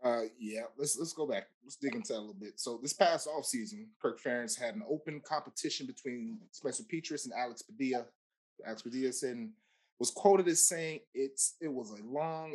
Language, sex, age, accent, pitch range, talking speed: English, male, 30-49, American, 130-175 Hz, 195 wpm